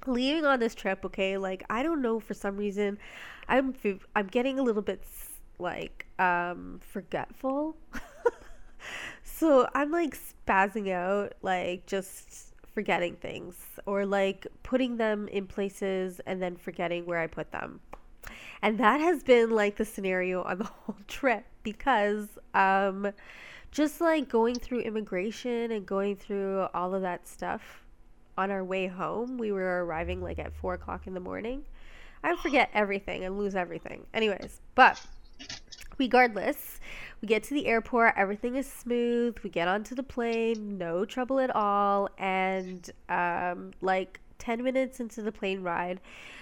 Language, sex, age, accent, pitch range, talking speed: English, female, 20-39, American, 190-240 Hz, 150 wpm